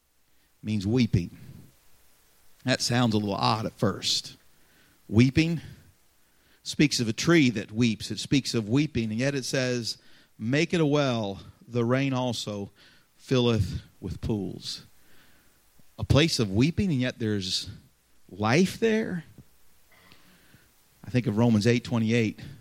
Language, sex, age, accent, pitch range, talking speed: English, male, 40-59, American, 100-125 Hz, 130 wpm